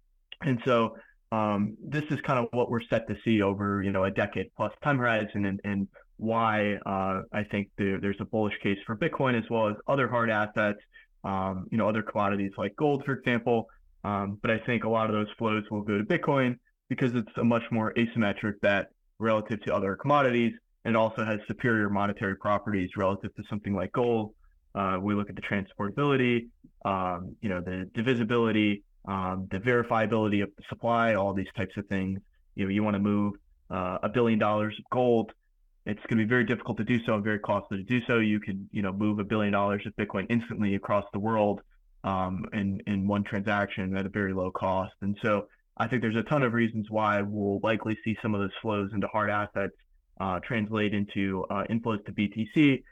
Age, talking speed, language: 20-39, 205 wpm, English